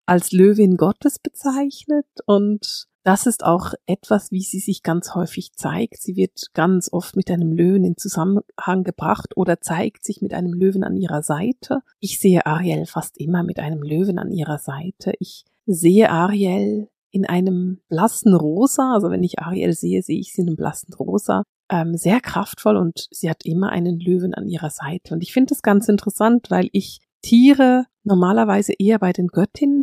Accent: German